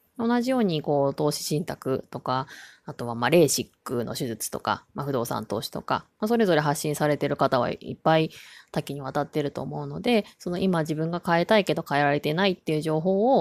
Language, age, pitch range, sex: Japanese, 20-39, 145-190 Hz, female